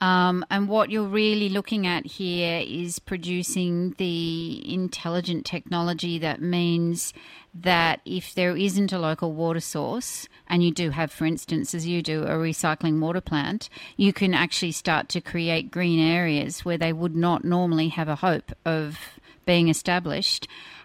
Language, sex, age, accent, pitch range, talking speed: English, female, 40-59, Australian, 170-190 Hz, 160 wpm